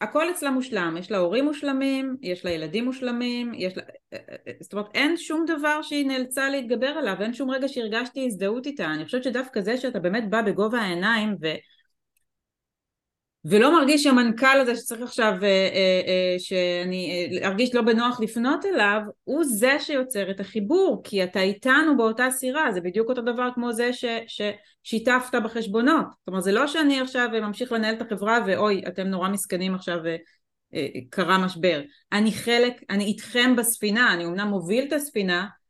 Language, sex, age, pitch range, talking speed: Hebrew, female, 30-49, 185-255 Hz, 170 wpm